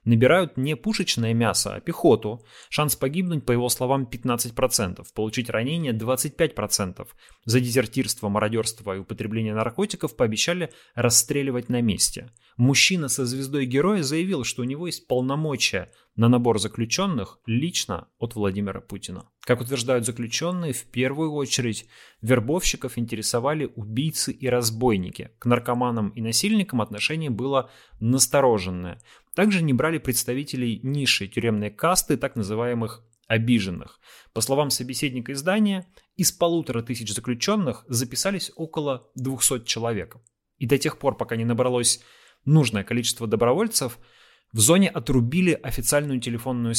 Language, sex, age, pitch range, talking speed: Russian, male, 30-49, 115-140 Hz, 125 wpm